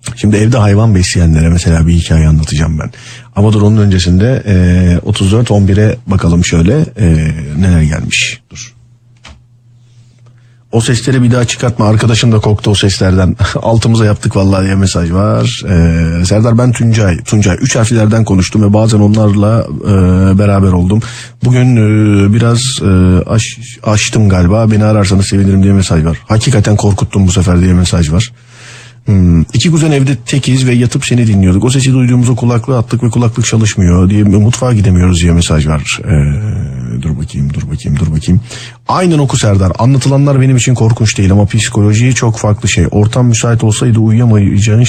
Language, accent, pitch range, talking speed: Turkish, native, 95-120 Hz, 160 wpm